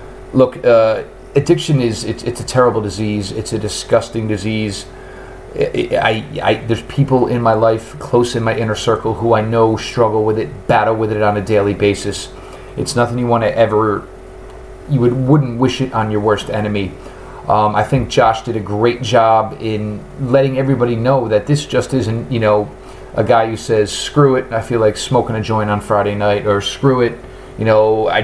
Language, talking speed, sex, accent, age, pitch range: English, 195 wpm, male, American, 30-49, 105-120 Hz